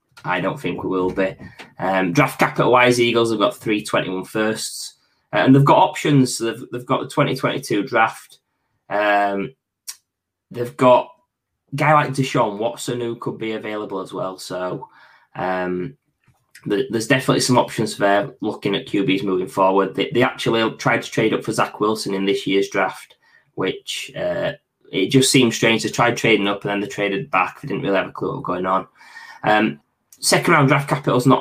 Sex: male